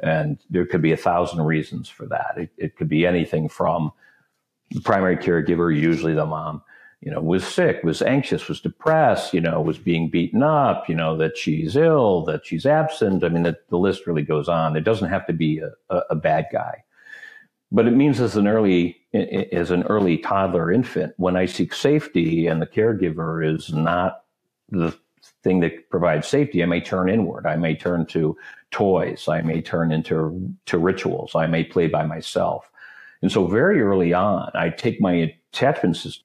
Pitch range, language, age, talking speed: 80-95 Hz, English, 50-69, 185 wpm